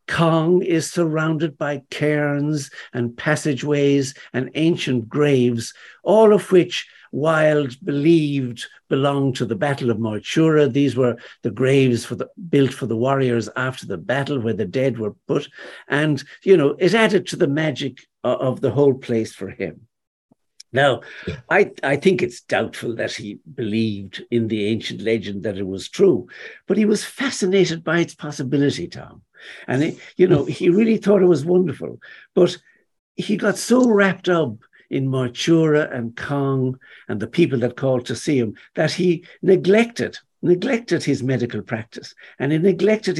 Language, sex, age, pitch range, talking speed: English, male, 60-79, 130-175 Hz, 155 wpm